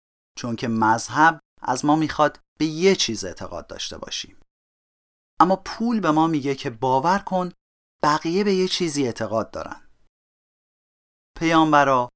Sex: male